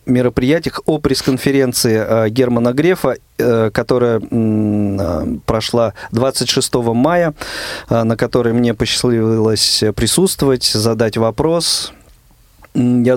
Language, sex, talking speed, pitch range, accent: Russian, male, 95 wpm, 110-130 Hz, native